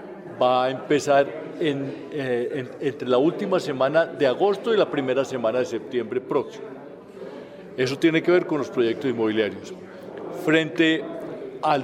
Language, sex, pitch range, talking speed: Spanish, male, 135-170 Hz, 135 wpm